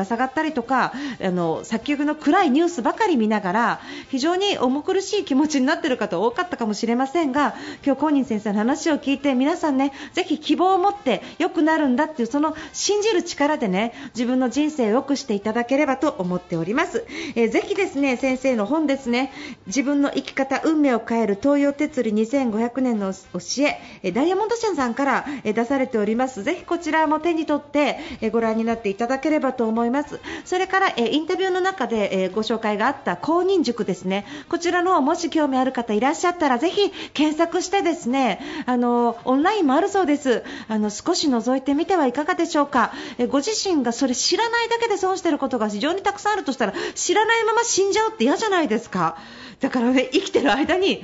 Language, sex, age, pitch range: Japanese, female, 40-59, 240-335 Hz